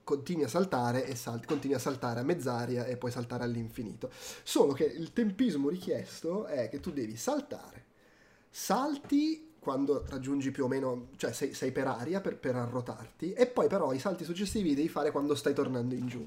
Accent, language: native, Italian